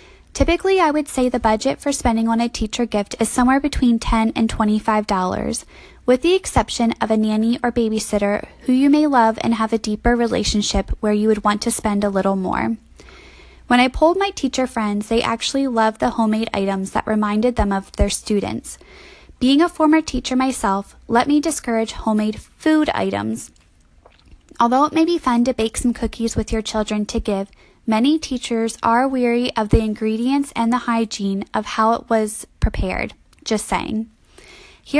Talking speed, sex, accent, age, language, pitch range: 180 wpm, female, American, 10-29, English, 215-265 Hz